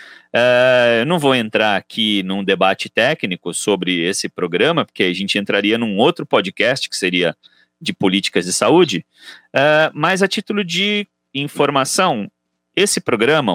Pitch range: 100-165 Hz